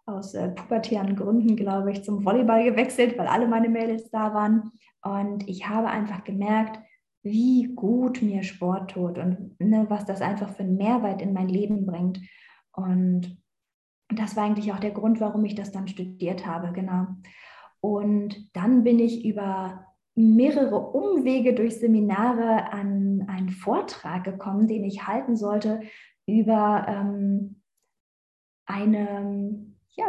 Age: 20-39